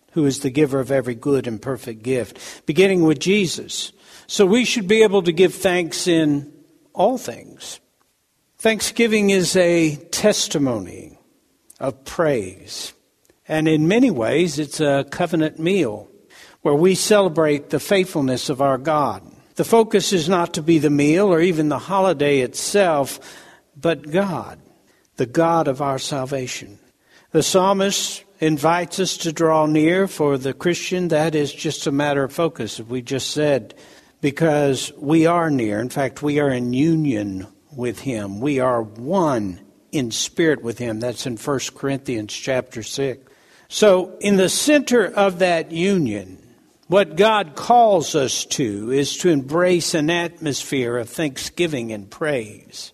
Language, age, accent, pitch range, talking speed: English, 60-79, American, 135-185 Hz, 150 wpm